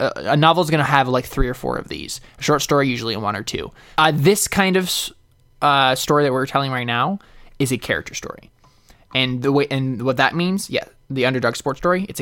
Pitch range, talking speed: 125-150 Hz, 230 wpm